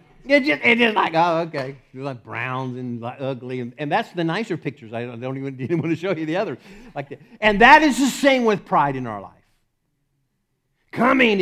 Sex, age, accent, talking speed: male, 50-69, American, 225 wpm